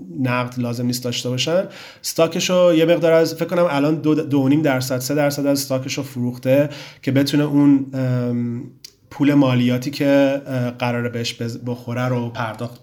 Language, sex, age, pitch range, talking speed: Persian, male, 30-49, 130-155 Hz, 155 wpm